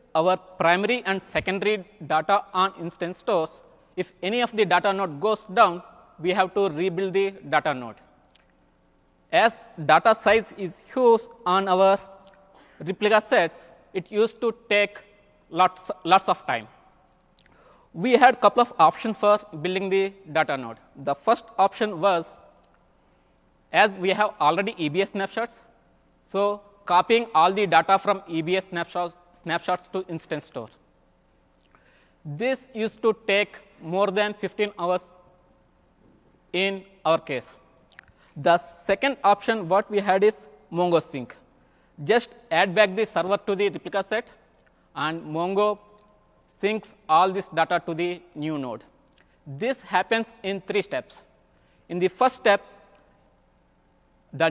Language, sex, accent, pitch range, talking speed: English, male, Indian, 170-210 Hz, 135 wpm